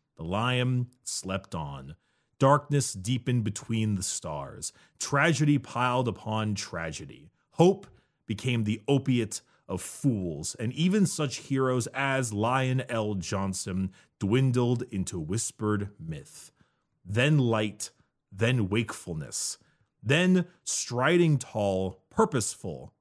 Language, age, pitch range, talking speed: English, 30-49, 100-130 Hz, 100 wpm